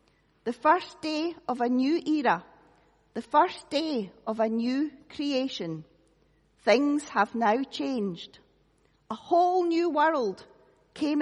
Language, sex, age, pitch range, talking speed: English, female, 40-59, 215-310 Hz, 125 wpm